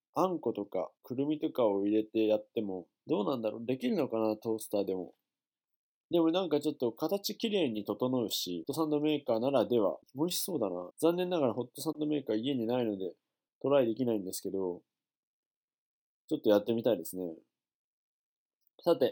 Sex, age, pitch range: male, 20-39, 110-155 Hz